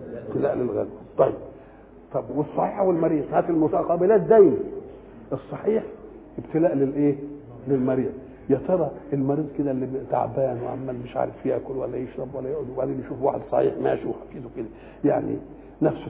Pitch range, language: 140-205 Hz, English